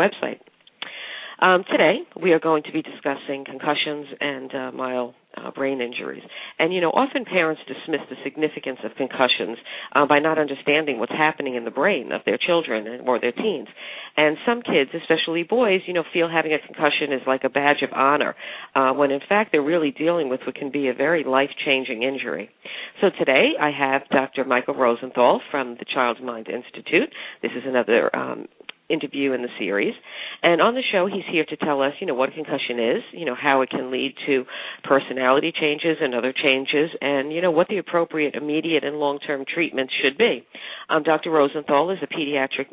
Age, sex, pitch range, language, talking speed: 50-69, female, 130-155 Hz, English, 195 wpm